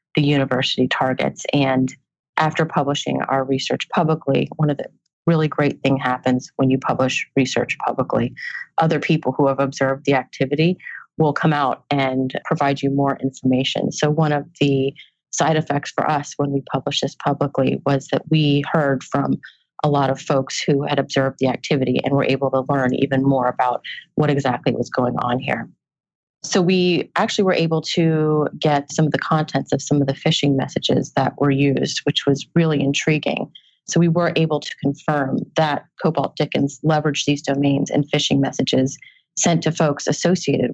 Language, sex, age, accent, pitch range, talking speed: English, female, 30-49, American, 135-155 Hz, 175 wpm